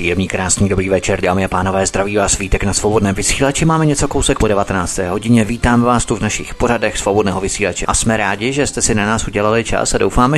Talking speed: 225 wpm